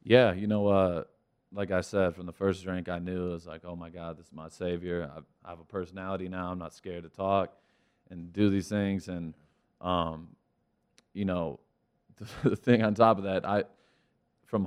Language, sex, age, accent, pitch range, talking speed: English, male, 20-39, American, 90-100 Hz, 205 wpm